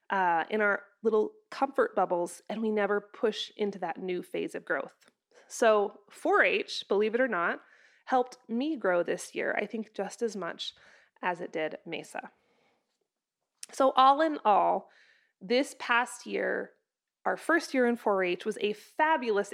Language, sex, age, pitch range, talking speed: English, female, 20-39, 205-265 Hz, 155 wpm